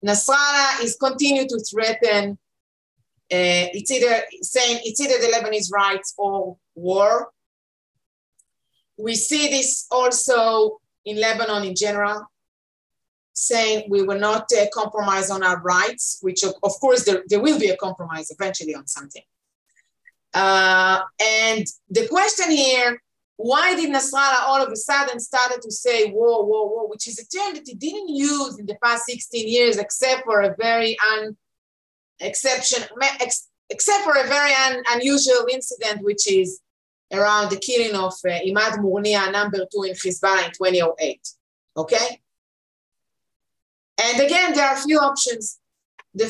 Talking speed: 150 wpm